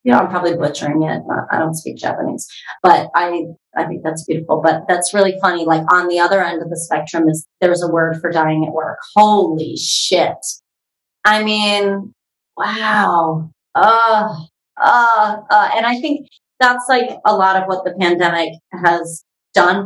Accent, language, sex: American, English, female